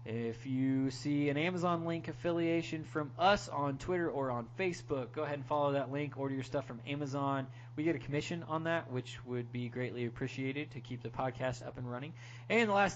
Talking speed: 215 wpm